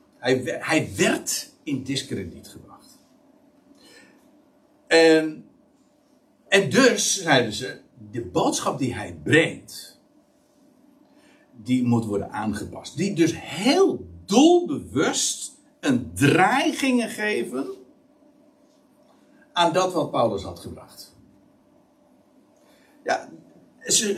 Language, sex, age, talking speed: Dutch, male, 60-79, 85 wpm